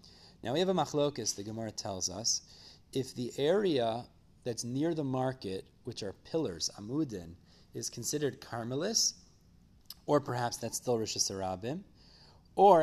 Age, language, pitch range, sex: 30-49, English, 105-140 Hz, male